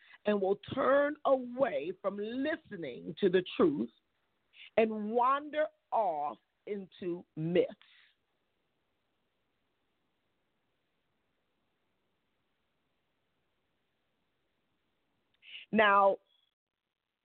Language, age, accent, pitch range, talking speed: English, 50-69, American, 205-285 Hz, 50 wpm